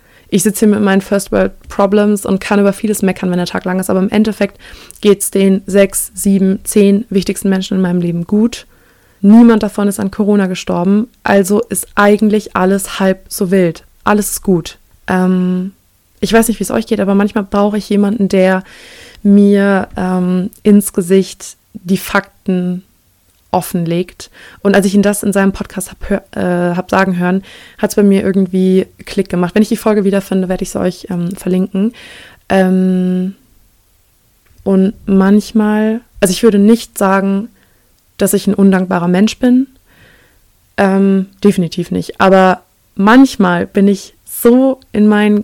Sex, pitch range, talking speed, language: female, 185-210 Hz, 160 wpm, German